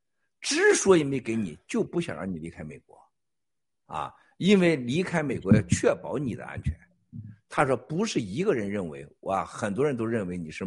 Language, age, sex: Chinese, 60-79, male